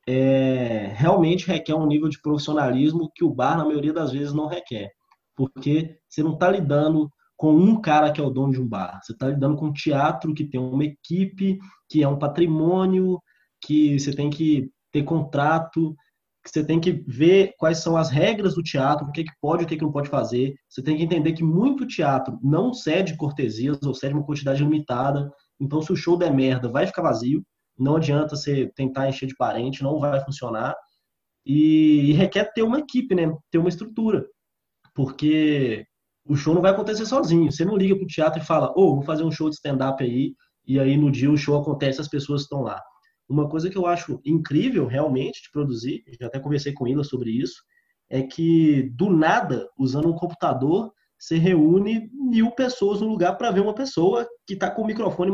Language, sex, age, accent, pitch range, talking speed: Portuguese, male, 20-39, Brazilian, 140-175 Hz, 205 wpm